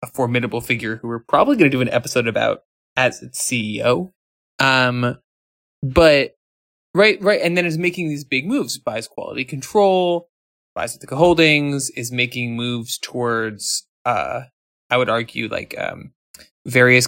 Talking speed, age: 150 wpm, 20-39